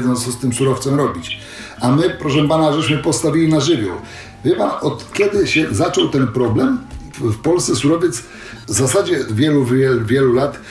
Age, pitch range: 50-69, 125-150 Hz